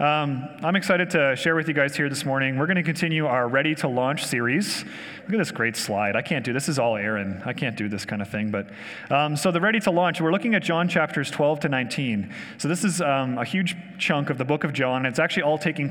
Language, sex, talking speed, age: English, male, 270 wpm, 30-49